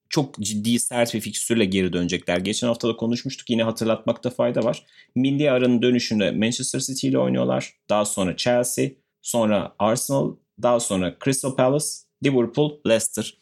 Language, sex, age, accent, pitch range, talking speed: Turkish, male, 30-49, native, 100-130 Hz, 150 wpm